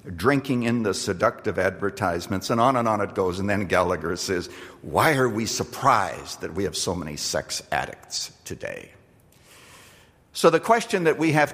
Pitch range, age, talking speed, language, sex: 110-145 Hz, 60-79, 170 wpm, English, male